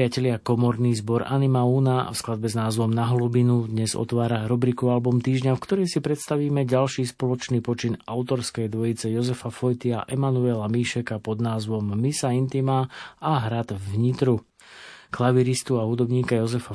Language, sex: Slovak, male